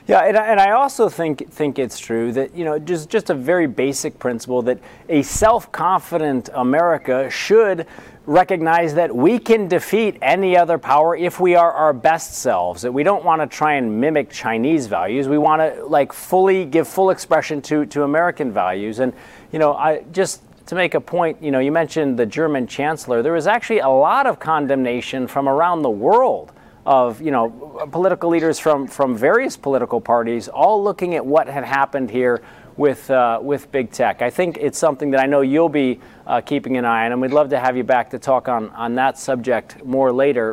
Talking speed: 200 wpm